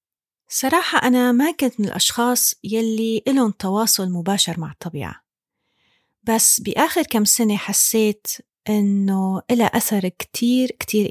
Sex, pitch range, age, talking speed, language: female, 190-245 Hz, 30-49, 120 wpm, Arabic